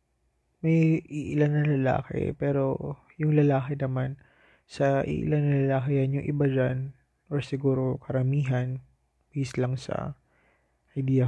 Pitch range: 125-150 Hz